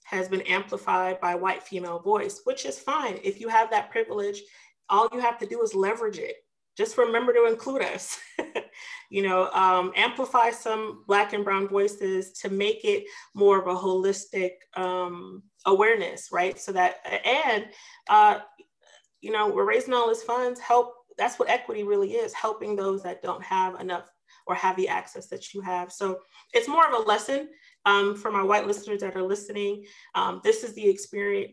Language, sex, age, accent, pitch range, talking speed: English, female, 30-49, American, 190-295 Hz, 185 wpm